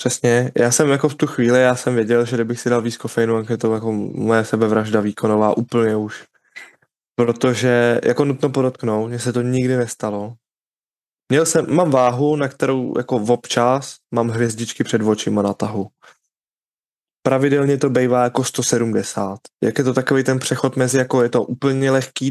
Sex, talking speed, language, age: male, 175 wpm, Czech, 20-39